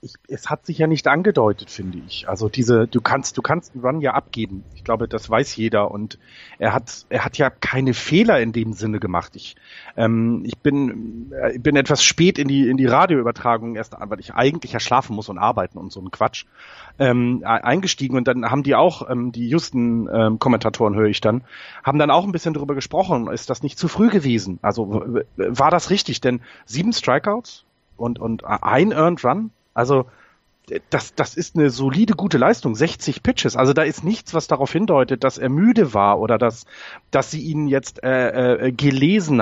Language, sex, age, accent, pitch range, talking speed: German, male, 30-49, German, 115-150 Hz, 200 wpm